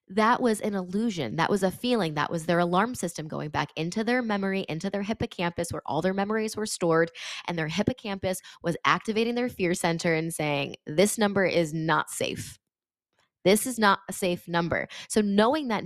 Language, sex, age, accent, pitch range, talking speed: English, female, 20-39, American, 165-210 Hz, 195 wpm